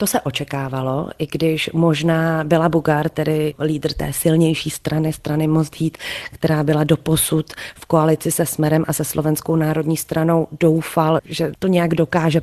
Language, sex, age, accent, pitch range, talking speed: Czech, female, 30-49, native, 150-165 Hz, 160 wpm